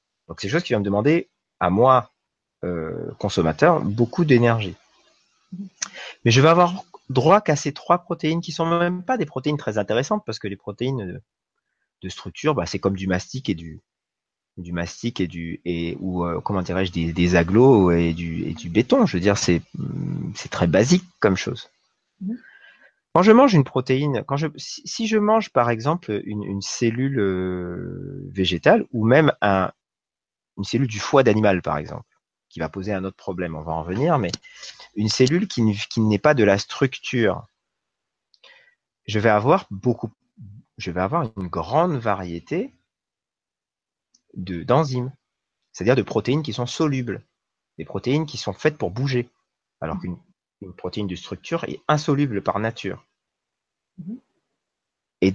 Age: 30-49